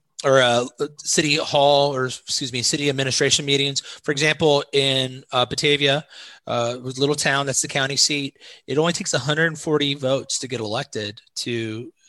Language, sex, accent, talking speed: English, male, American, 155 wpm